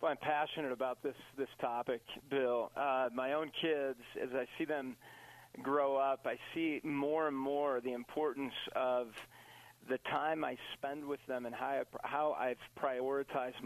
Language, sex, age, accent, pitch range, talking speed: English, male, 40-59, American, 130-155 Hz, 175 wpm